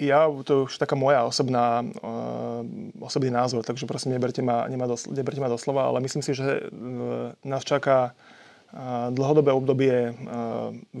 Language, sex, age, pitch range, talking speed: Slovak, male, 20-39, 125-135 Hz, 145 wpm